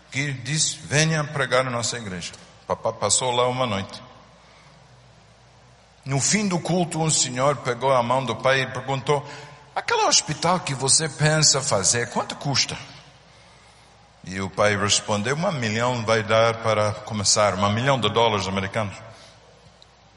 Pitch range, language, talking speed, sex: 115-155 Hz, Portuguese, 145 wpm, male